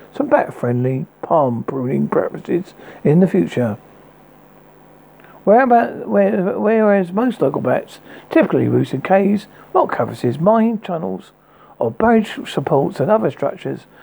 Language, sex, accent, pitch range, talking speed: English, male, British, 140-235 Hz, 130 wpm